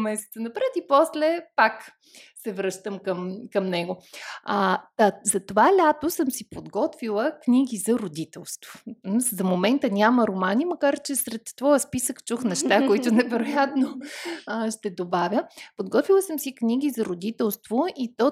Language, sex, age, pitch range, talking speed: Bulgarian, female, 30-49, 185-255 Hz, 140 wpm